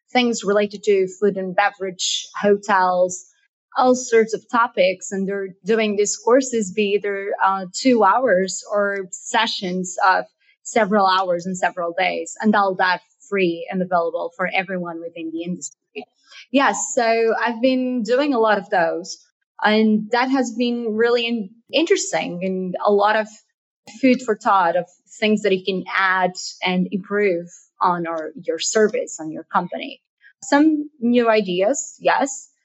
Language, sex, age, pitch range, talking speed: English, female, 20-39, 185-240 Hz, 145 wpm